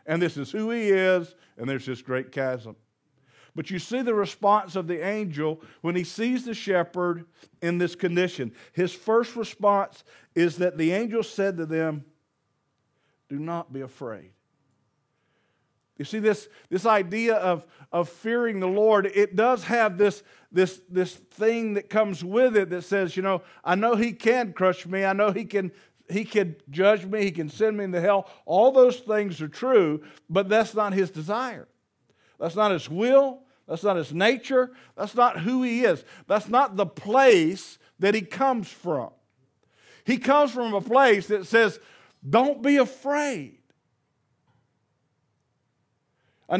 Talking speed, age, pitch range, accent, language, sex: 165 wpm, 50-69, 170-230 Hz, American, English, male